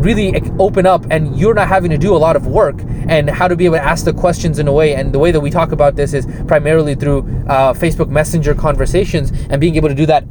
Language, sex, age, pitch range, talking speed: English, male, 20-39, 140-170 Hz, 270 wpm